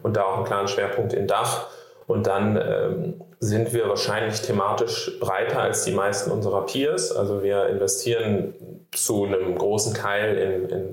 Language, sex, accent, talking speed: German, male, German, 165 wpm